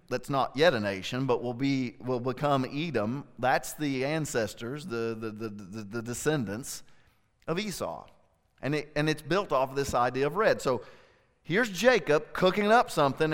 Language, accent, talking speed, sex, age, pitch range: English, American, 170 wpm, male, 40-59, 130-175 Hz